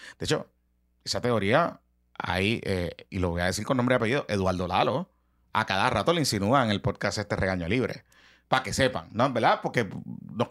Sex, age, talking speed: male, 30-49, 200 wpm